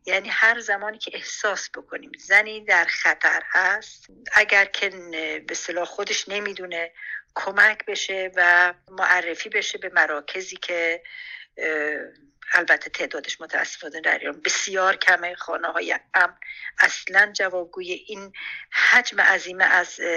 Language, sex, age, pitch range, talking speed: Persian, female, 50-69, 180-220 Hz, 115 wpm